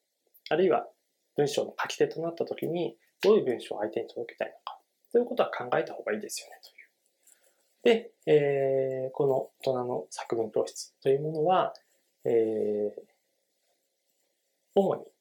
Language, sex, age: Japanese, male, 20-39